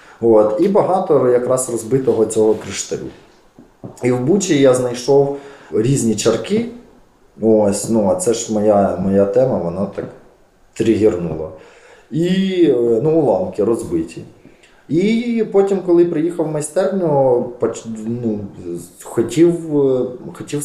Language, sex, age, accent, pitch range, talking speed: Ukrainian, male, 20-39, native, 110-155 Hz, 105 wpm